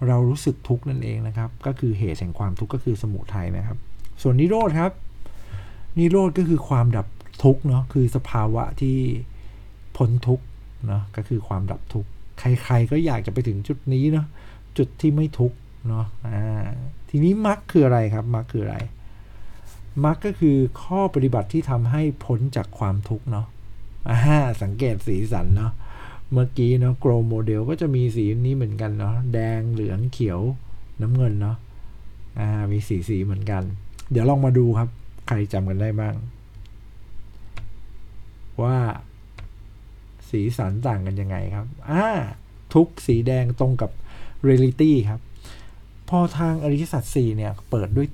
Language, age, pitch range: Thai, 60-79, 105-130 Hz